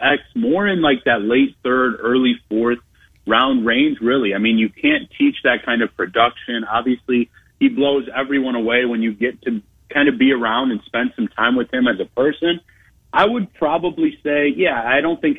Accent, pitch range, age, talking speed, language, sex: American, 120-180 Hz, 30-49, 200 wpm, English, male